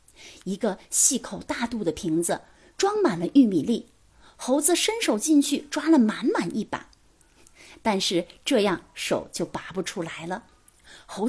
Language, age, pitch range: Chinese, 30-49, 205-305 Hz